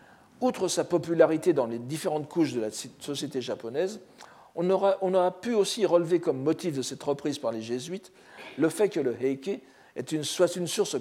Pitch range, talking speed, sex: 130-180 Hz, 180 wpm, male